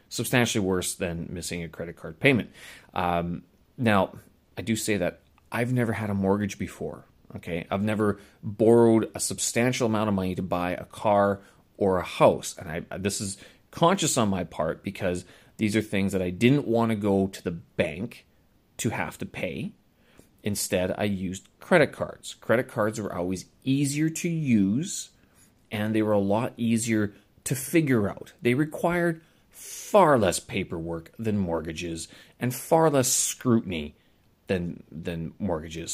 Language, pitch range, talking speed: English, 95-120 Hz, 160 wpm